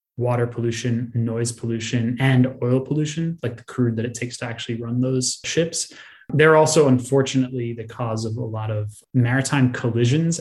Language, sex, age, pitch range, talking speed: English, male, 20-39, 115-135 Hz, 155 wpm